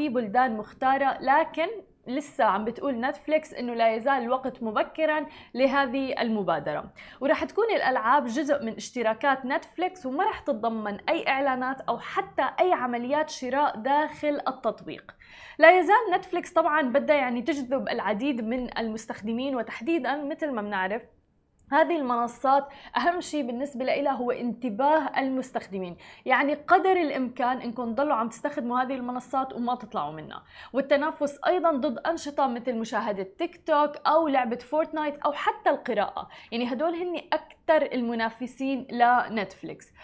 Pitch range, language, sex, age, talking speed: 245-305 Hz, Arabic, female, 20-39, 130 wpm